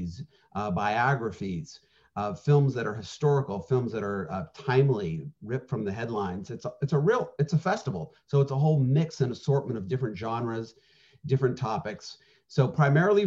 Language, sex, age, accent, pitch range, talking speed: English, male, 40-59, American, 115-150 Hz, 170 wpm